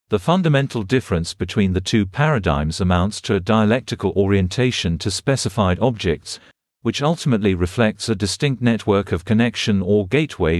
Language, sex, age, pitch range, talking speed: English, male, 40-59, 95-120 Hz, 140 wpm